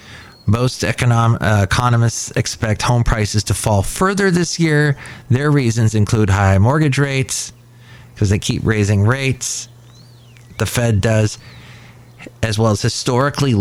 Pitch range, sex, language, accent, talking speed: 105-125 Hz, male, English, American, 130 wpm